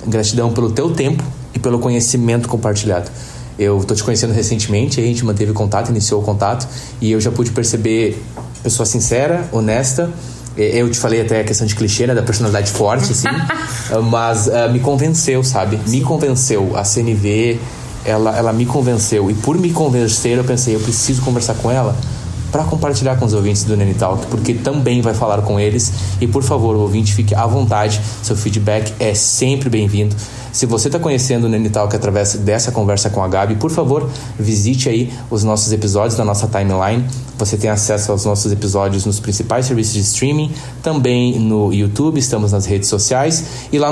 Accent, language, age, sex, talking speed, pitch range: Brazilian, Portuguese, 20-39, male, 180 wpm, 105-125 Hz